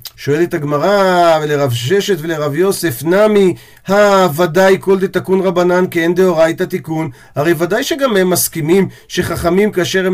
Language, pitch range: Hebrew, 155-200 Hz